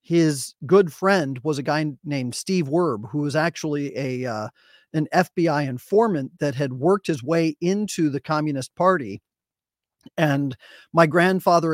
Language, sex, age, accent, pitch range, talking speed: English, male, 40-59, American, 145-175 Hz, 150 wpm